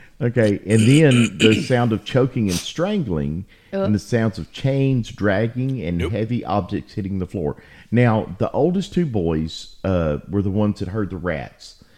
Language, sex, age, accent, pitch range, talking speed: English, male, 50-69, American, 80-110 Hz, 170 wpm